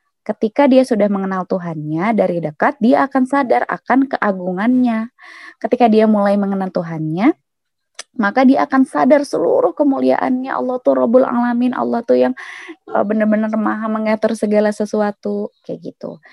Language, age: Indonesian, 20-39